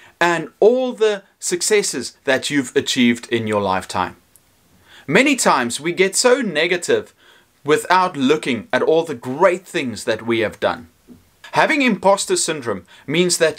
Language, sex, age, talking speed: English, male, 30-49, 140 wpm